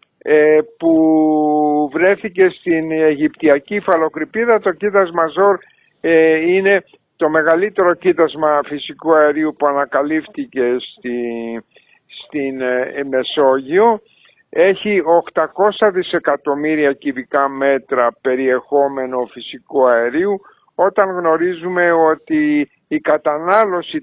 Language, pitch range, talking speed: Greek, 140-185 Hz, 80 wpm